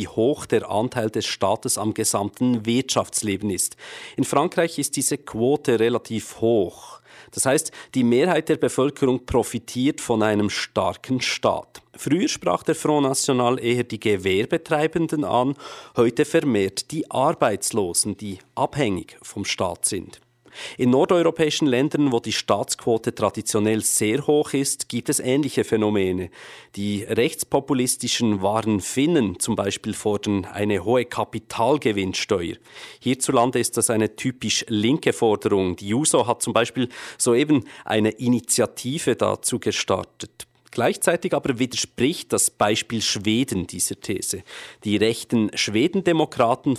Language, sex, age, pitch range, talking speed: English, male, 40-59, 105-130 Hz, 125 wpm